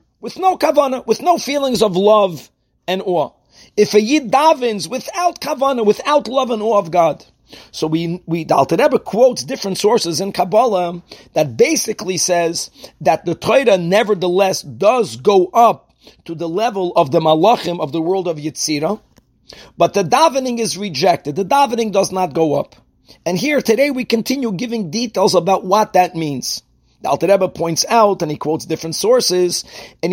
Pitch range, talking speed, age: 170-230 Hz, 165 wpm, 40-59